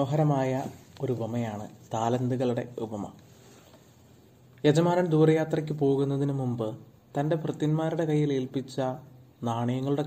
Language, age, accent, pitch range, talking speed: Malayalam, 30-49, native, 120-155 Hz, 85 wpm